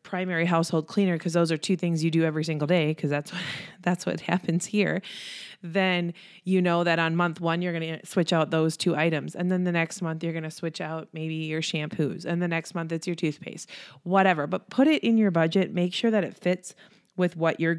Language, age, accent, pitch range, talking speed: English, 20-39, American, 165-200 Hz, 235 wpm